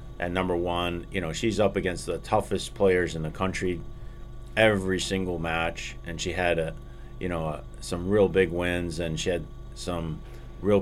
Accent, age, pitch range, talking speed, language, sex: American, 30-49, 85-100 Hz, 175 wpm, English, male